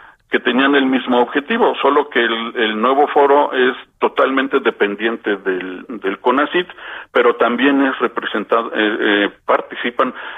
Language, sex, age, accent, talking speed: Spanish, male, 50-69, Mexican, 140 wpm